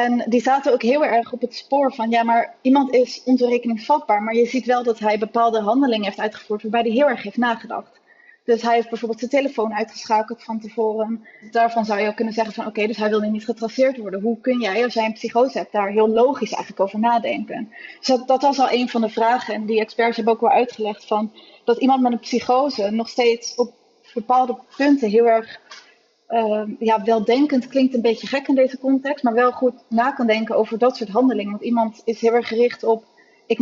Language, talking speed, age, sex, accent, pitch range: Dutch, 225 wpm, 20-39, female, Dutch, 220-250 Hz